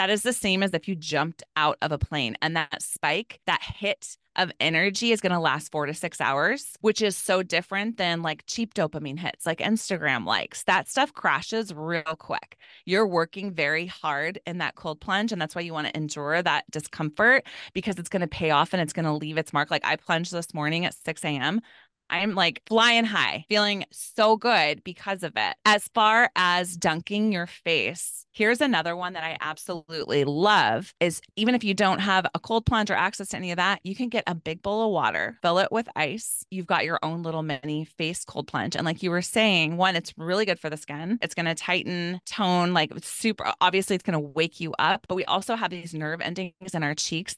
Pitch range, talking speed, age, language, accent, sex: 160-210 Hz, 225 wpm, 20-39, English, American, female